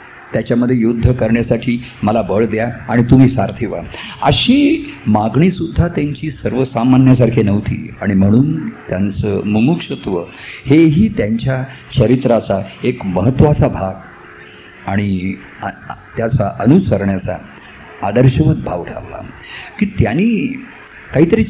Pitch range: 110-160 Hz